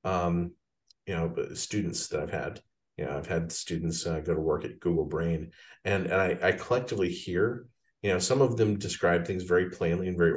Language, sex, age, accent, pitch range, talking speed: English, male, 40-59, American, 85-105 Hz, 210 wpm